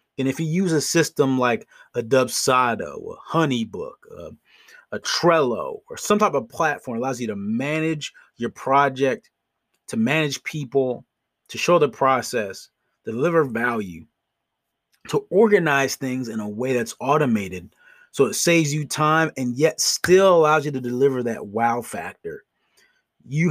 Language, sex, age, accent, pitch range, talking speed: English, male, 30-49, American, 125-180 Hz, 150 wpm